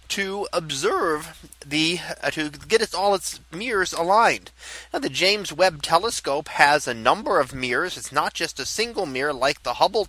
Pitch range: 150-200 Hz